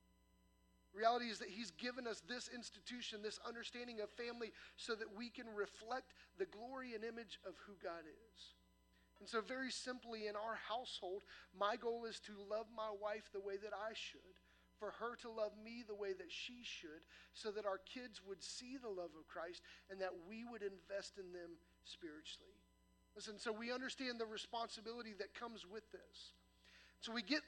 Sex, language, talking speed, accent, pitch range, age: male, English, 185 wpm, American, 210-250 Hz, 40-59